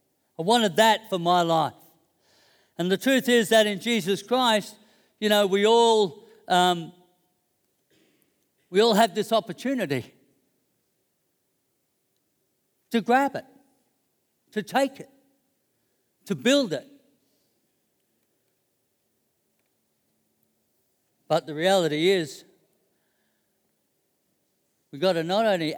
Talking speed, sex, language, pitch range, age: 100 wpm, male, English, 170-225 Hz, 60-79